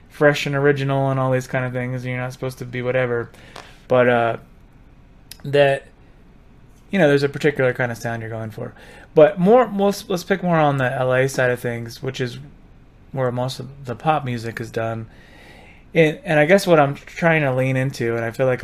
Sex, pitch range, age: male, 120-150 Hz, 30-49